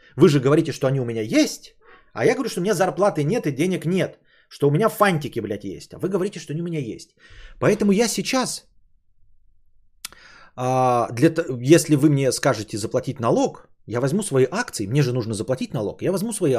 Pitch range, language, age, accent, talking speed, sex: 120-180 Hz, Russian, 30-49, native, 200 wpm, male